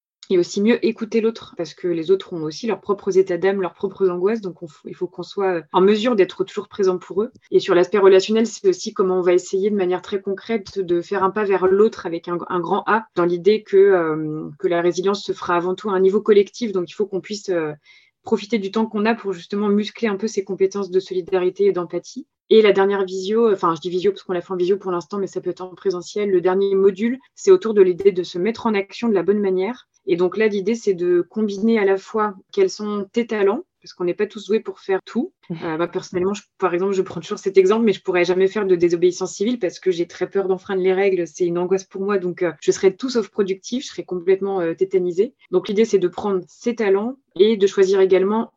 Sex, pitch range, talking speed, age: female, 185-215 Hz, 260 wpm, 20-39